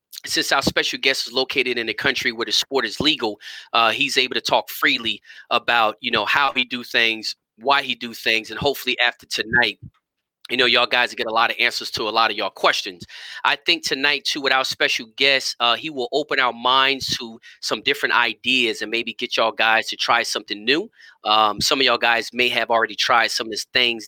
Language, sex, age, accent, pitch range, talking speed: English, male, 30-49, American, 110-130 Hz, 225 wpm